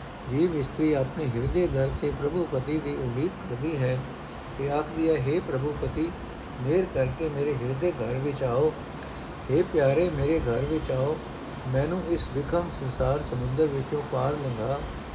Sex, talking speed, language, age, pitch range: male, 150 wpm, Punjabi, 60-79, 130-155 Hz